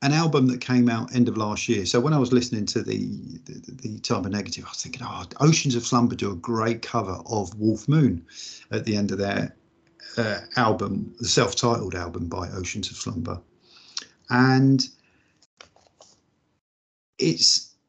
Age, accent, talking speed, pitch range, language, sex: 50-69, British, 170 wpm, 100-125 Hz, English, male